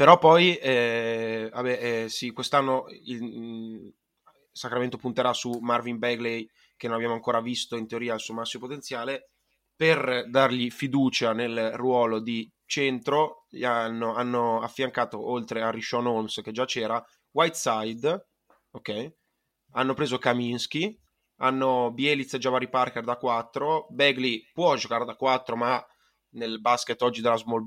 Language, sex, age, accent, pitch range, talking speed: Italian, male, 20-39, native, 115-130 Hz, 140 wpm